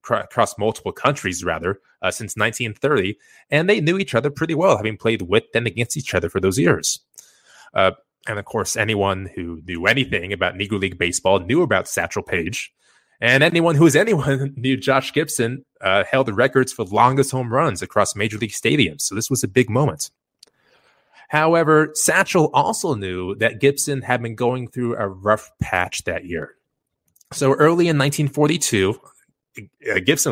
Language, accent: English, American